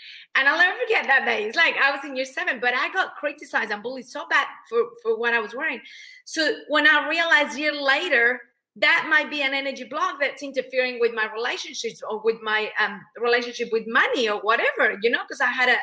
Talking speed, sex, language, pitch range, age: 230 wpm, female, English, 220-295 Hz, 30-49